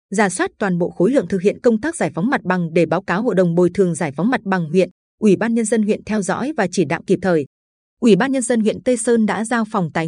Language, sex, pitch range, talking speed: Vietnamese, female, 180-230 Hz, 290 wpm